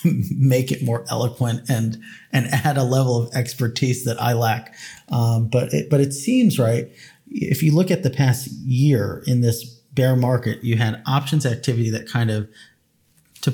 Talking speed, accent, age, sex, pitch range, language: 175 wpm, American, 30-49, male, 115-135 Hz, English